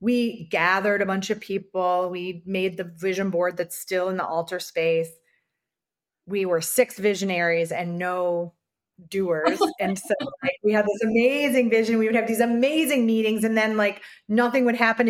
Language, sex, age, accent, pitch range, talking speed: English, female, 30-49, American, 180-225 Hz, 170 wpm